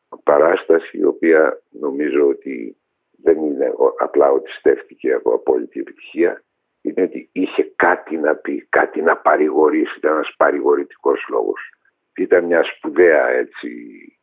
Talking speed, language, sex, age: 125 wpm, Greek, male, 60-79